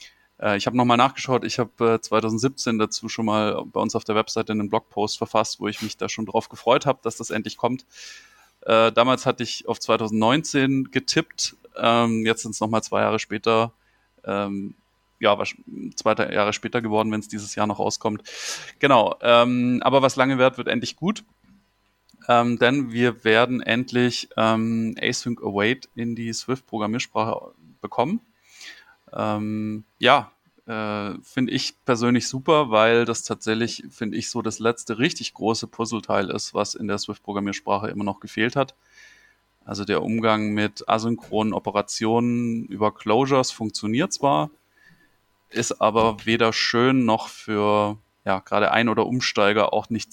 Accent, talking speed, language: German, 145 wpm, German